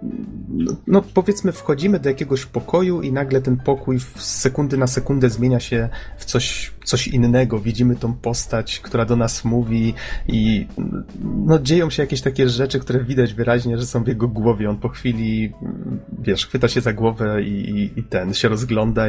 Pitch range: 110-125 Hz